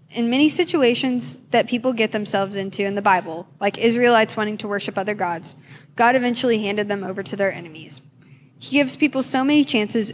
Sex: female